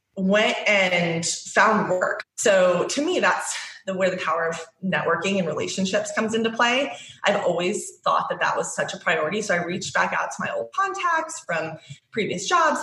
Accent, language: American, English